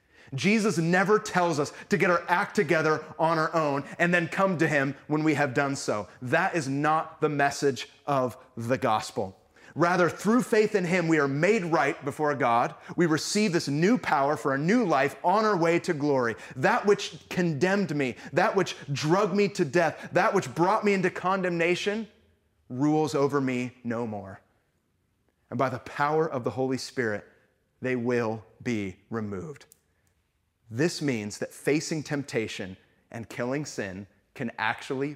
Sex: male